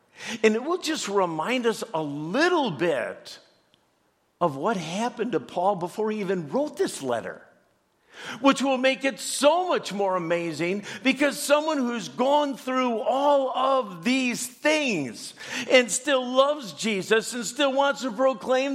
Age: 50-69